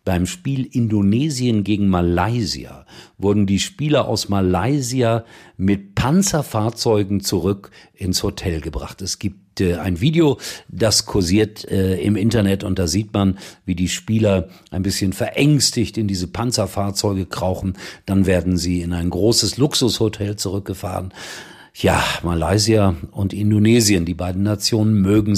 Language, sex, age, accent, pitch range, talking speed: German, male, 50-69, German, 95-125 Hz, 130 wpm